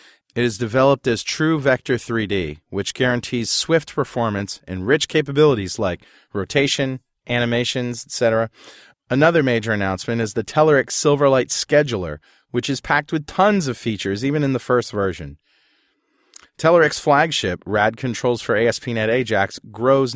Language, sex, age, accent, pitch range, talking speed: English, male, 30-49, American, 110-145 Hz, 135 wpm